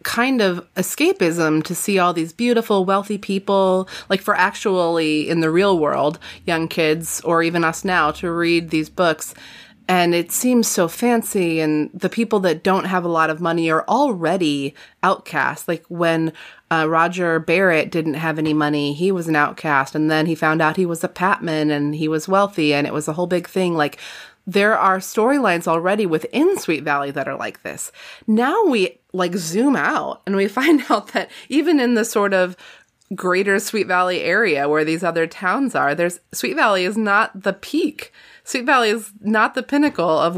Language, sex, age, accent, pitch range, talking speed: English, female, 30-49, American, 165-205 Hz, 190 wpm